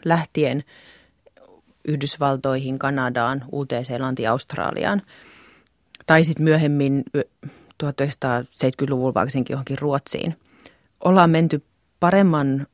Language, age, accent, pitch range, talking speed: Finnish, 30-49, native, 140-175 Hz, 70 wpm